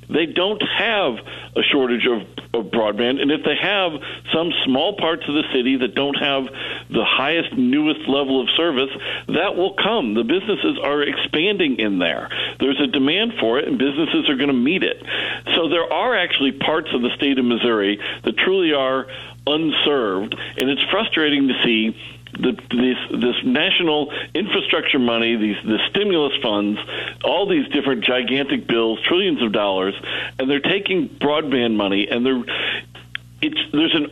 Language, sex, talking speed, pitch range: English, male, 165 wpm, 115-150 Hz